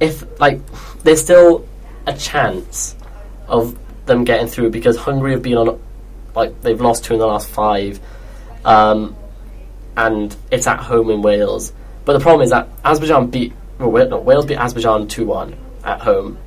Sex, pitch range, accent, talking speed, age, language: male, 110-130 Hz, British, 170 wpm, 20-39, English